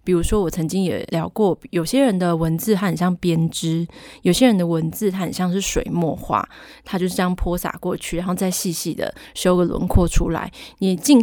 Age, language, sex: 20-39, Chinese, female